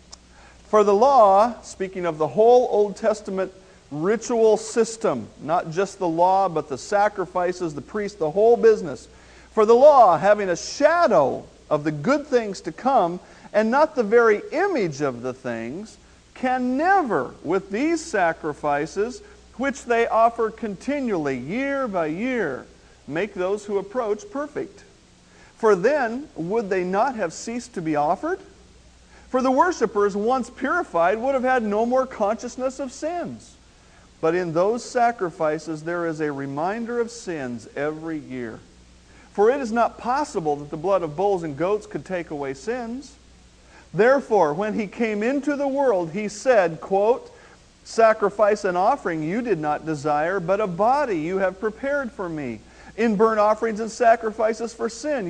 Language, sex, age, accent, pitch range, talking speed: English, male, 50-69, American, 170-240 Hz, 155 wpm